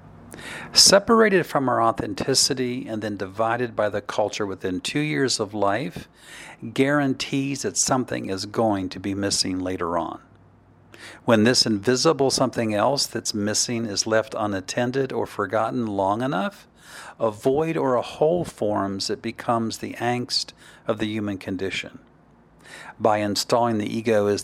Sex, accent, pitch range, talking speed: male, American, 100-130 Hz, 140 wpm